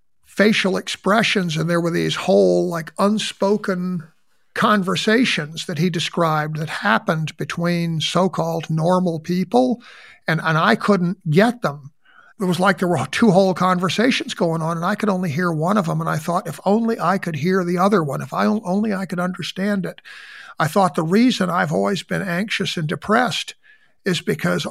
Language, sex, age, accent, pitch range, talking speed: English, male, 50-69, American, 165-200 Hz, 175 wpm